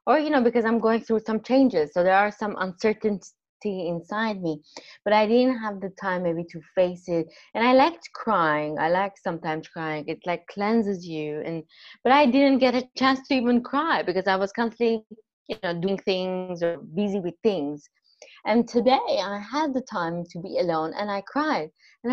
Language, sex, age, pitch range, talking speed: English, female, 20-39, 175-240 Hz, 200 wpm